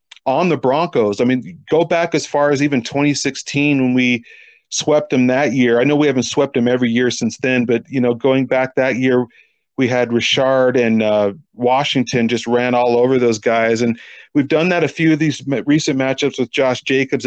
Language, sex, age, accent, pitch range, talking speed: English, male, 40-59, American, 125-150 Hz, 210 wpm